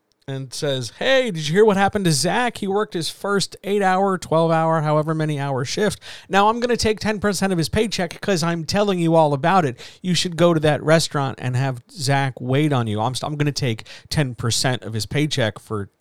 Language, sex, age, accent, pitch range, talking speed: English, male, 50-69, American, 120-170 Hz, 215 wpm